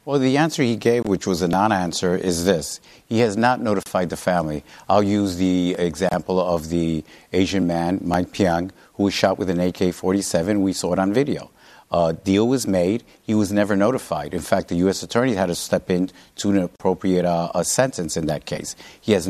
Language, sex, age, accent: English, male, 50-69, American